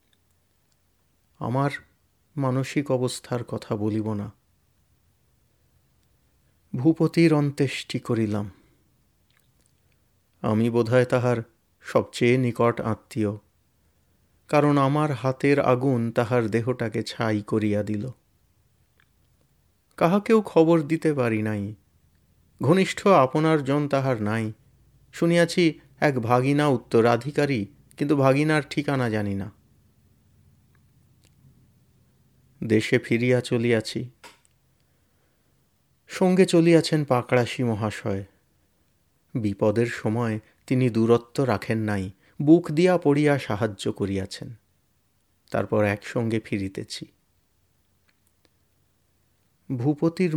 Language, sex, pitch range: Bengali, male, 105-145 Hz